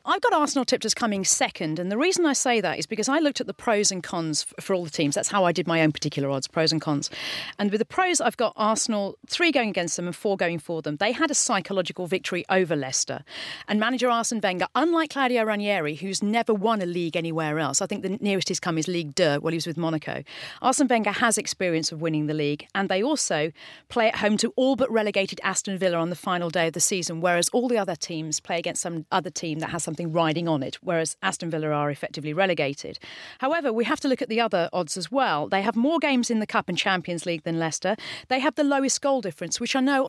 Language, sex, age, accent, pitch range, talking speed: English, female, 40-59, British, 165-225 Hz, 255 wpm